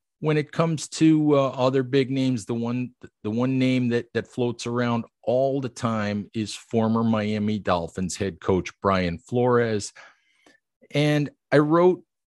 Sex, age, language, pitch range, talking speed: male, 50-69, English, 105-125 Hz, 150 wpm